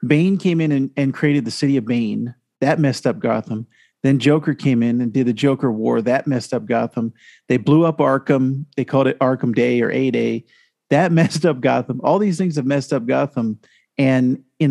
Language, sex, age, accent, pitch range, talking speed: English, male, 50-69, American, 125-155 Hz, 210 wpm